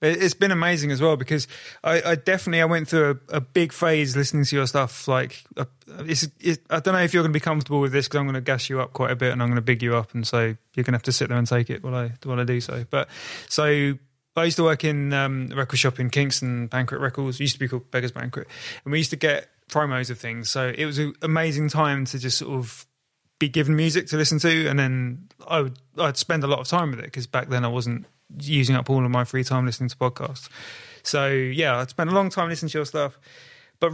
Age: 20-39